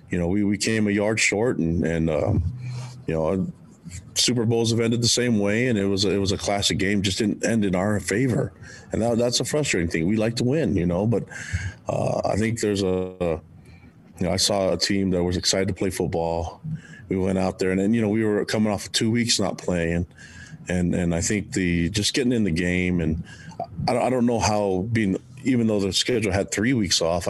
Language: English